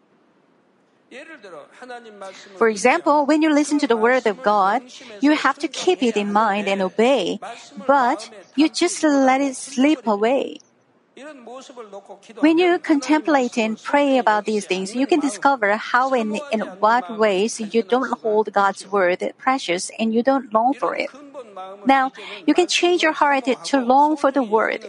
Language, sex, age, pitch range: Korean, female, 50-69, 225-295 Hz